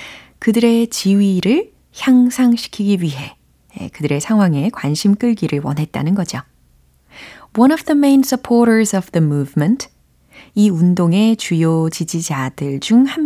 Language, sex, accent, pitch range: Korean, female, native, 145-220 Hz